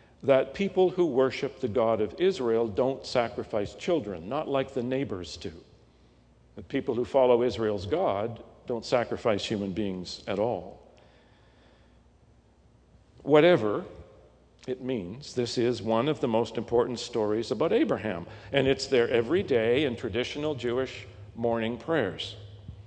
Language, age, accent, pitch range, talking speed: English, 50-69, American, 105-135 Hz, 130 wpm